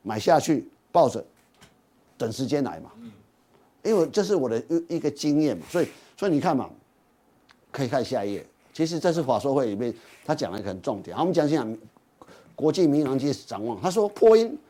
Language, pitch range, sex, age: Chinese, 135-180 Hz, male, 50-69